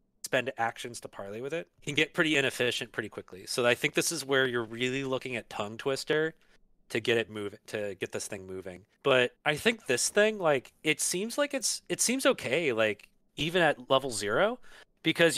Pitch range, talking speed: 120-175 Hz, 205 wpm